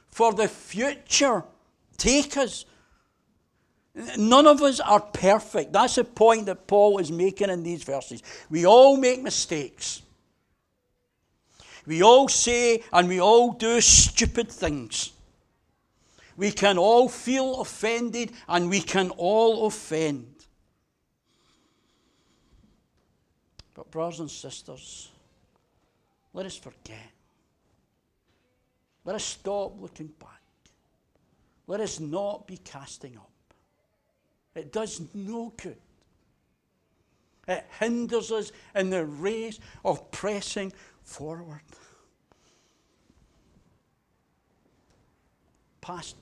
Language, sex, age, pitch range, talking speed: English, male, 60-79, 150-225 Hz, 95 wpm